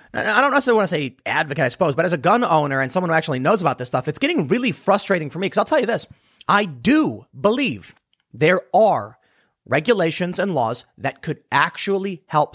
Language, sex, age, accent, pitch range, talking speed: English, male, 30-49, American, 155-205 Hz, 215 wpm